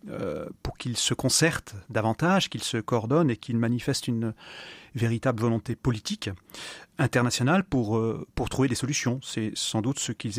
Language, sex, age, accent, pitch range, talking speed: French, male, 30-49, French, 110-135 Hz, 150 wpm